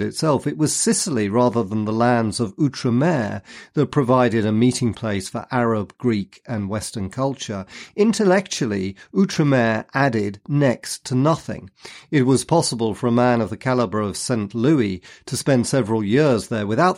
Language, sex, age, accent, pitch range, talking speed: English, male, 40-59, British, 110-150 Hz, 160 wpm